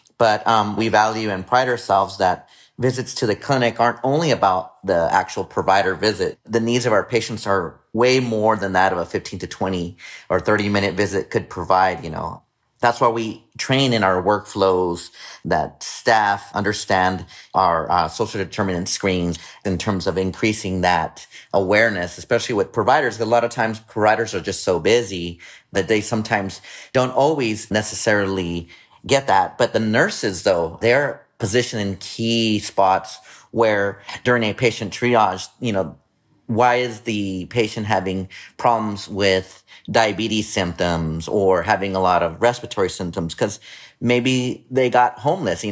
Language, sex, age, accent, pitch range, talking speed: English, male, 30-49, American, 95-115 Hz, 160 wpm